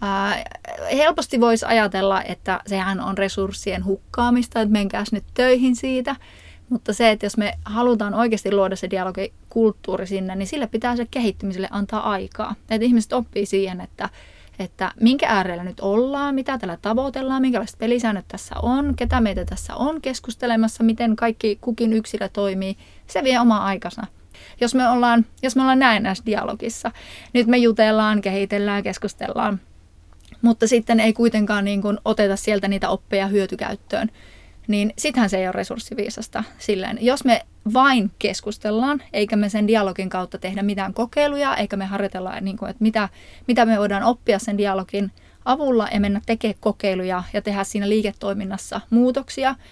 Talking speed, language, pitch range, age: 155 wpm, Finnish, 195-240 Hz, 30-49